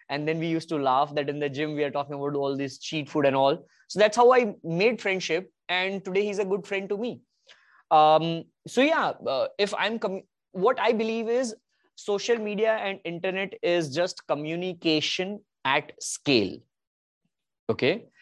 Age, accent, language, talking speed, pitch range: 20-39, Indian, English, 180 wpm, 155-195 Hz